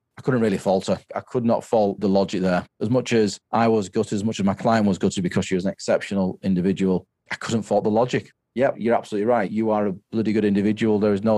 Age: 40-59